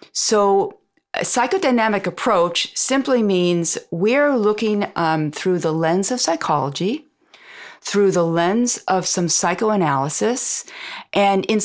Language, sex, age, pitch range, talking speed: English, female, 40-59, 170-240 Hz, 115 wpm